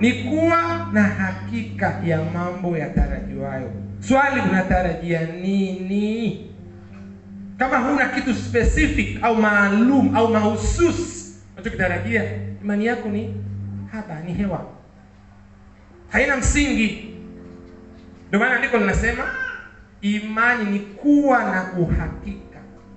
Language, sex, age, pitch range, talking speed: Swahili, male, 40-59, 160-235 Hz, 100 wpm